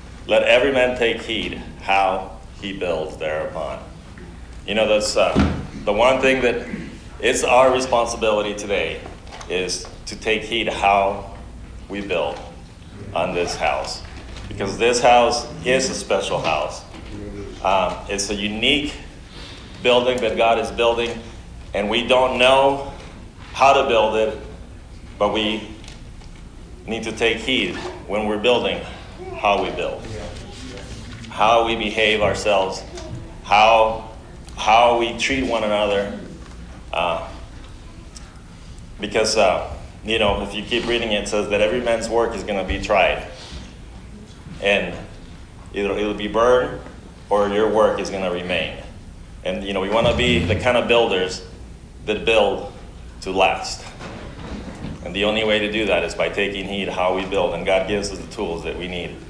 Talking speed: 150 wpm